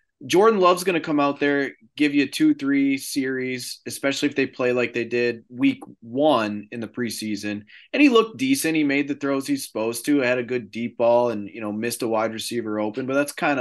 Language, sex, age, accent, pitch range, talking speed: English, male, 20-39, American, 110-145 Hz, 225 wpm